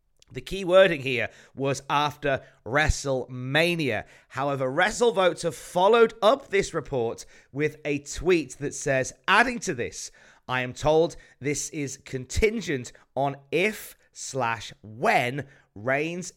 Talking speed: 120 wpm